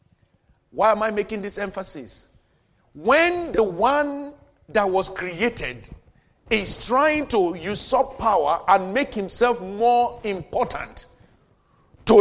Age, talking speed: 50-69, 115 wpm